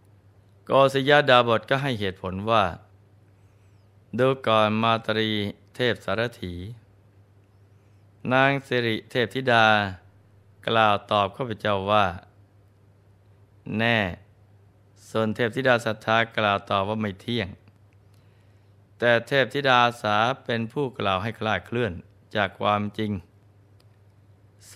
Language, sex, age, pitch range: Thai, male, 20-39, 100-115 Hz